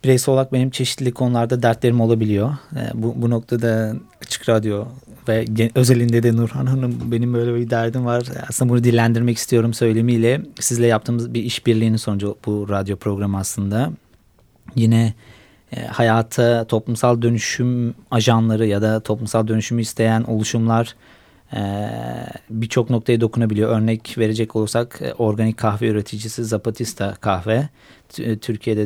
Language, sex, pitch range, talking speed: Turkish, male, 110-120 Hz, 125 wpm